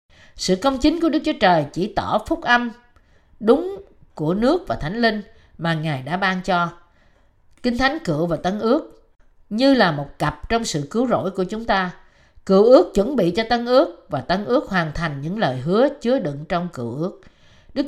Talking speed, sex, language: 200 wpm, female, Vietnamese